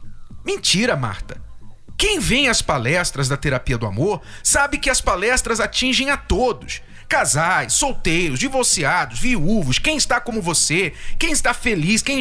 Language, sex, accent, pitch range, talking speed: Portuguese, male, Brazilian, 190-280 Hz, 145 wpm